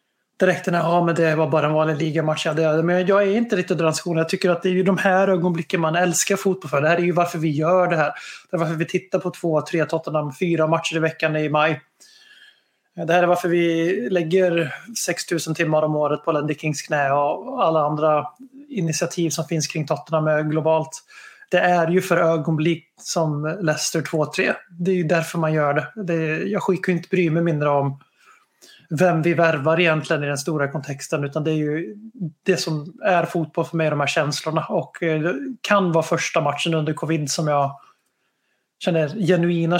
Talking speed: 195 wpm